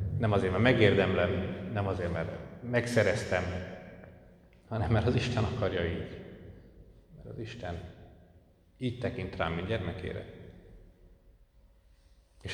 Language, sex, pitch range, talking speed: Hungarian, male, 85-95 Hz, 110 wpm